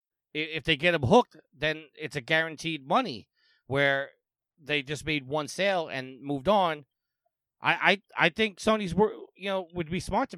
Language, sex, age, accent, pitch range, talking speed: English, male, 30-49, American, 135-165 Hz, 180 wpm